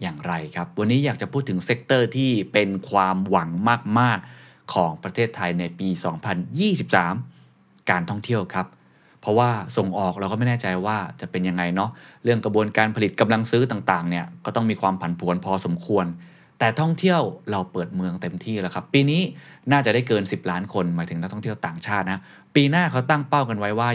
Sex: male